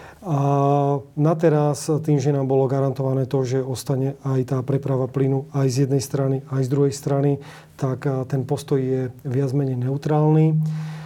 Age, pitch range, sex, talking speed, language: 40-59, 130-150 Hz, male, 165 wpm, Slovak